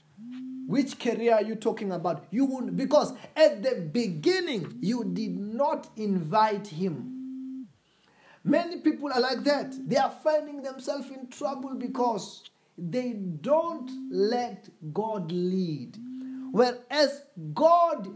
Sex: male